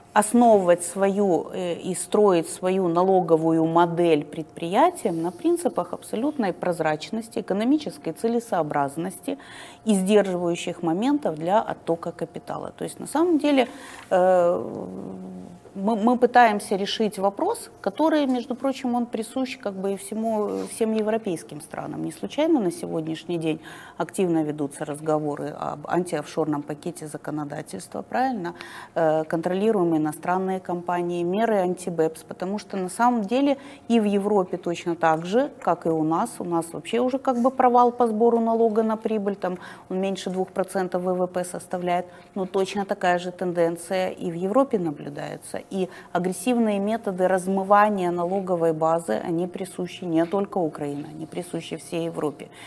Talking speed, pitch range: 135 wpm, 160-205 Hz